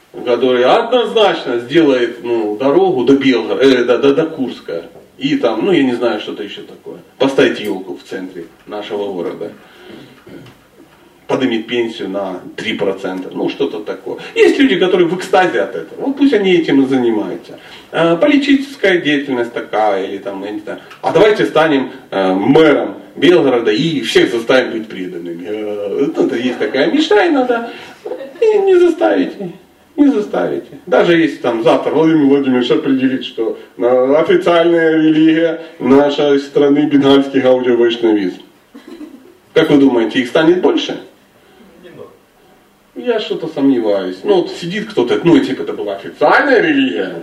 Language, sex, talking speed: Russian, male, 135 wpm